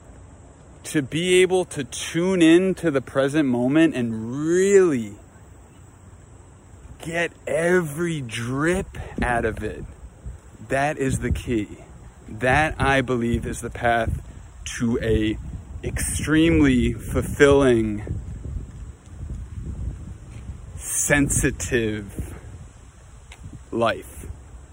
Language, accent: English, American